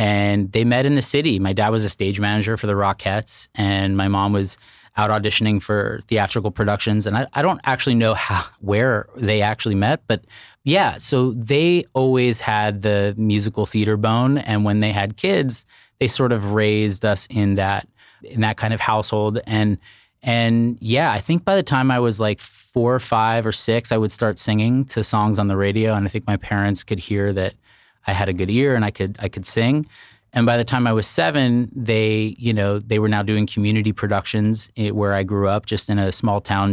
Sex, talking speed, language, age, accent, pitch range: male, 215 wpm, English, 20-39, American, 105-120 Hz